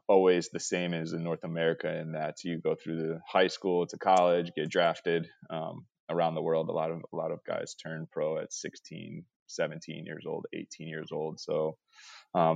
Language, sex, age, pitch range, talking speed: English, male, 20-39, 80-90 Hz, 200 wpm